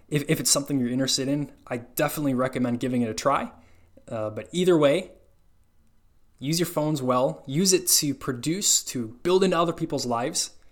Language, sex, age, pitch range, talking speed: English, male, 20-39, 110-145 Hz, 175 wpm